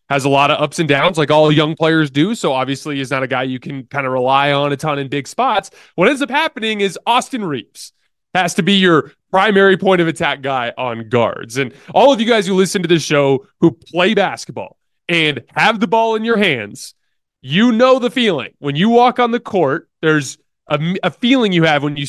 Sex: male